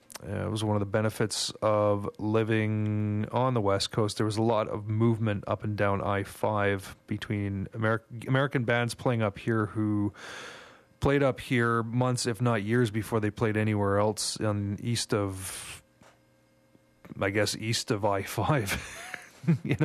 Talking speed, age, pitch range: 150 wpm, 30-49, 105-130 Hz